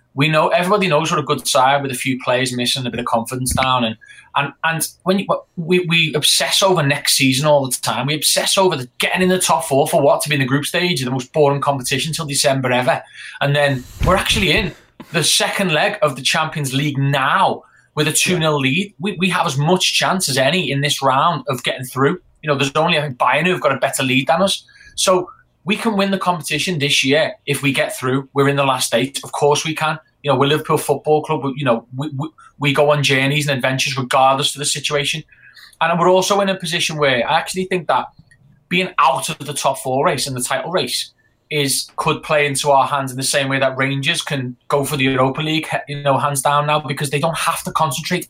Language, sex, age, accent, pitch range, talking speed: English, male, 20-39, British, 135-165 Hz, 245 wpm